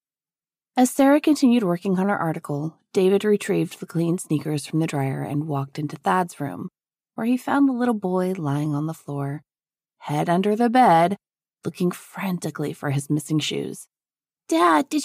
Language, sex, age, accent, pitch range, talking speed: English, female, 20-39, American, 140-180 Hz, 170 wpm